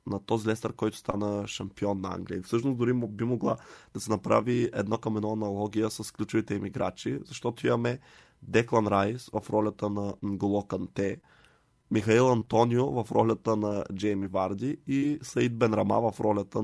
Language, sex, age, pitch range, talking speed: Bulgarian, male, 20-39, 105-115 Hz, 160 wpm